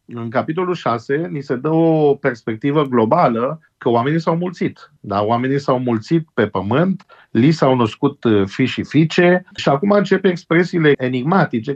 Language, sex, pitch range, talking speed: Romanian, male, 115-150 Hz, 155 wpm